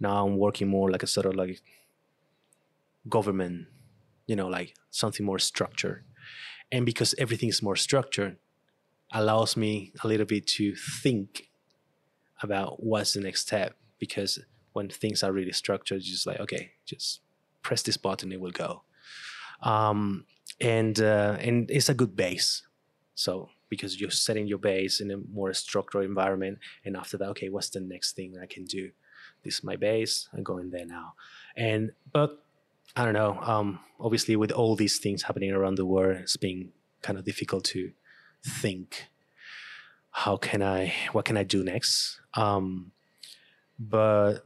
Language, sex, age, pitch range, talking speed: English, male, 20-39, 95-120 Hz, 160 wpm